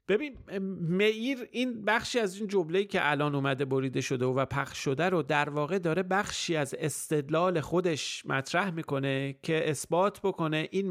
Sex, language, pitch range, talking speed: male, Persian, 140-190 Hz, 160 wpm